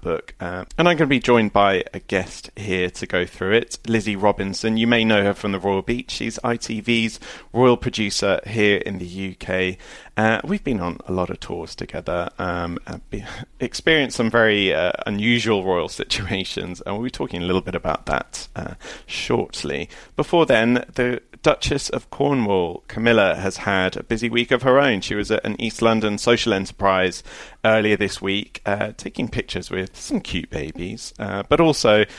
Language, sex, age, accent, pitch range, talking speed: English, male, 30-49, British, 95-115 Hz, 180 wpm